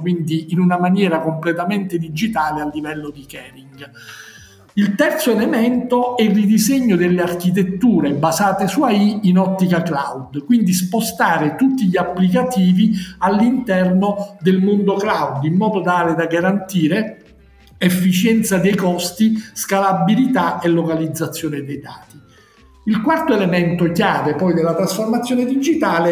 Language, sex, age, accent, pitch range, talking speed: Italian, male, 50-69, native, 170-210 Hz, 125 wpm